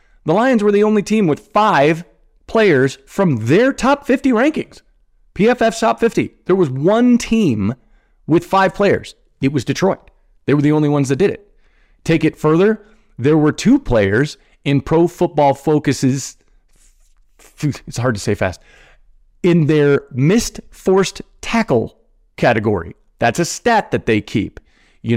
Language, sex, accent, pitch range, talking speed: English, male, American, 120-190 Hz, 155 wpm